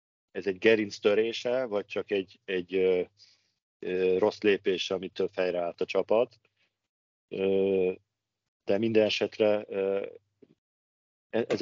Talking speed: 125 wpm